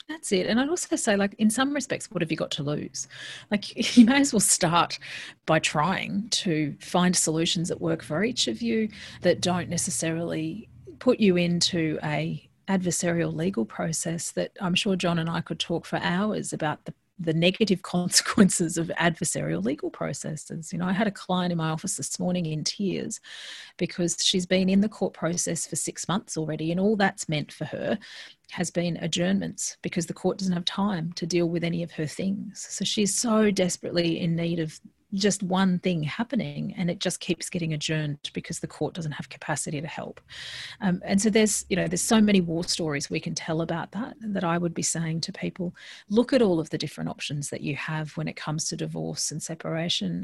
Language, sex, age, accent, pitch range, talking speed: English, female, 40-59, Australian, 165-195 Hz, 205 wpm